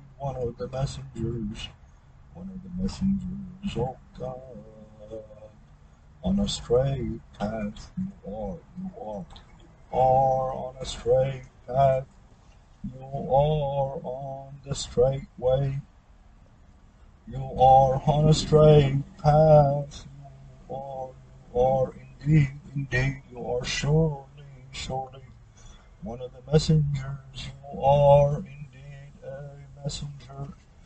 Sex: male